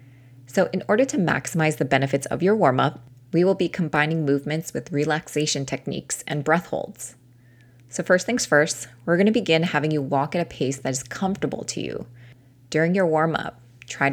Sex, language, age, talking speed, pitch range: female, English, 20-39, 195 wpm, 130-160 Hz